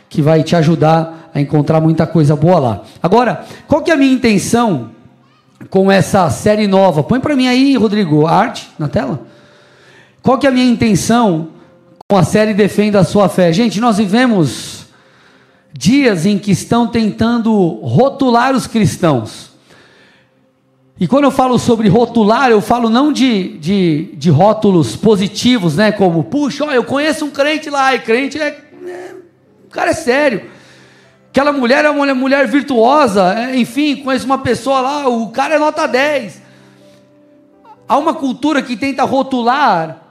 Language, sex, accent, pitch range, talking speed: Portuguese, male, Brazilian, 200-270 Hz, 160 wpm